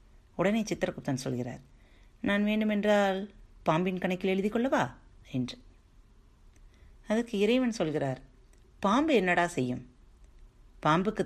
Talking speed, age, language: 85 wpm, 30-49, Tamil